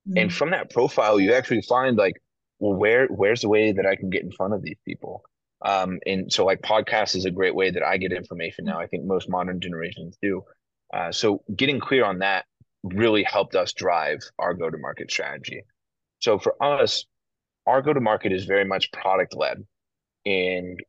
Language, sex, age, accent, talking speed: English, male, 30-49, American, 185 wpm